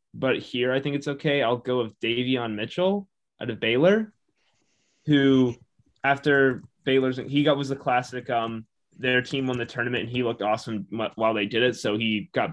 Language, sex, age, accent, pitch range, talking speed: English, male, 20-39, American, 115-145 Hz, 185 wpm